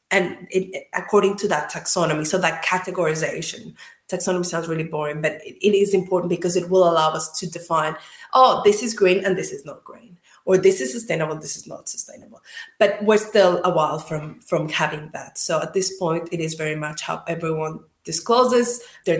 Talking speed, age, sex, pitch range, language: 195 wpm, 20-39, female, 165-215 Hz, English